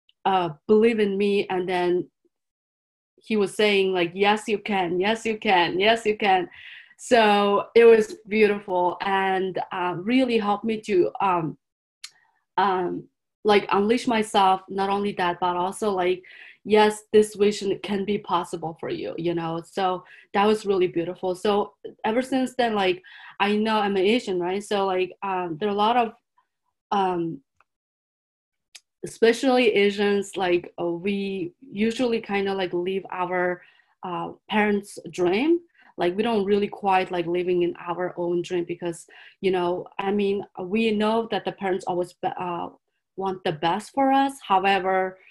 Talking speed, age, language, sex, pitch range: 155 wpm, 20-39, English, female, 180-215 Hz